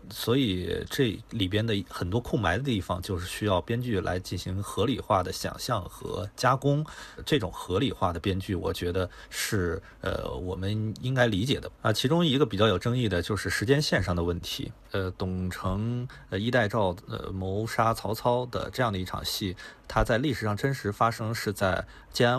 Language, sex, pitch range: Chinese, male, 95-120 Hz